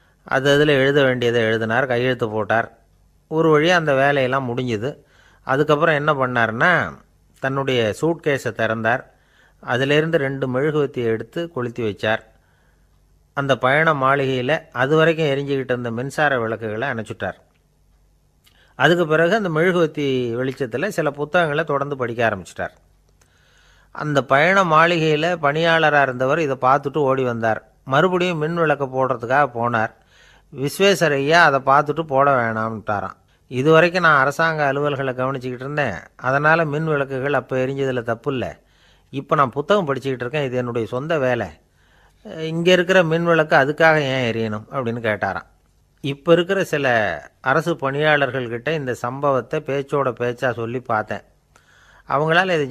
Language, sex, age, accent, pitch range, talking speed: Tamil, male, 30-49, native, 115-155 Hz, 120 wpm